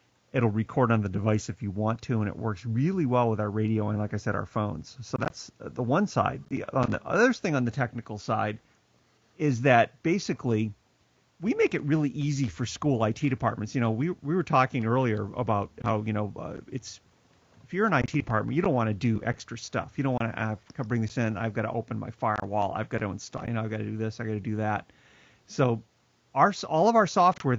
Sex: male